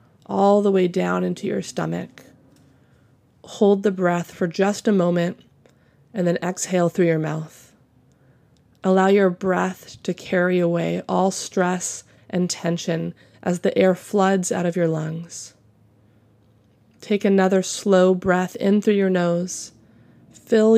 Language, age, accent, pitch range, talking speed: English, 20-39, American, 165-195 Hz, 135 wpm